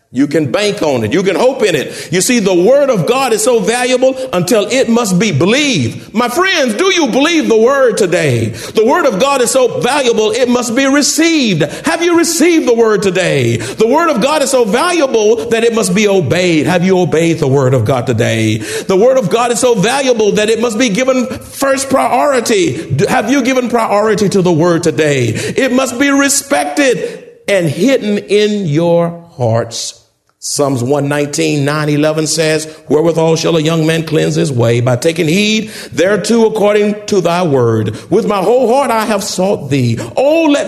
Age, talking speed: 50-69, 195 wpm